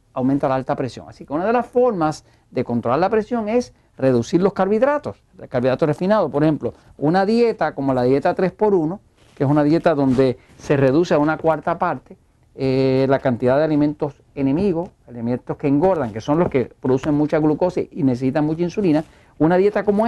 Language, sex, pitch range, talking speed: Spanish, male, 135-210 Hz, 185 wpm